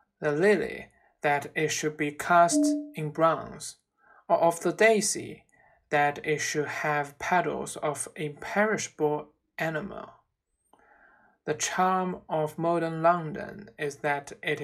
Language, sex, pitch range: Chinese, male, 150-195 Hz